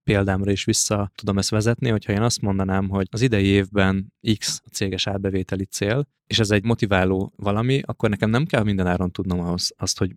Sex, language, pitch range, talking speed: male, Hungarian, 95-110 Hz, 200 wpm